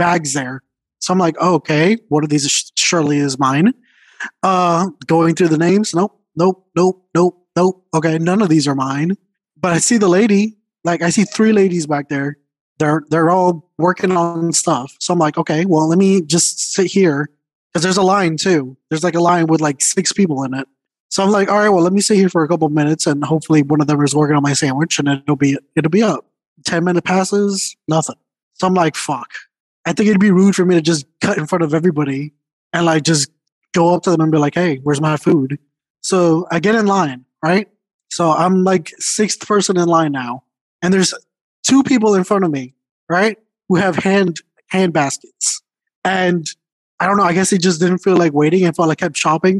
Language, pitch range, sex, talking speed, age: English, 155-190 Hz, male, 220 wpm, 20-39